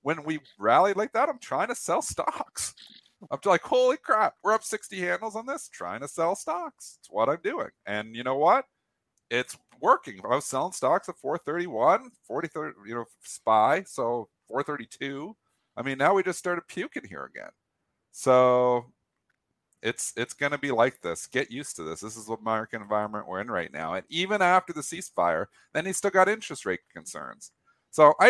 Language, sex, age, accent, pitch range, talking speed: English, male, 40-59, American, 135-195 Hz, 190 wpm